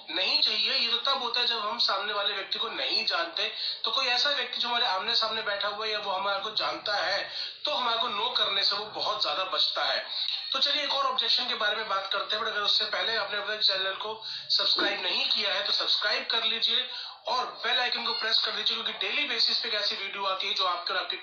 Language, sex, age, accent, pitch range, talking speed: Hindi, male, 30-49, native, 190-240 Hz, 225 wpm